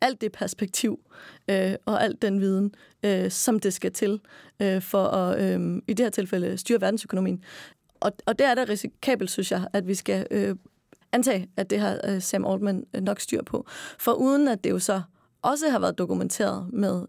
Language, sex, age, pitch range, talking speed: Danish, female, 30-49, 190-230 Hz, 195 wpm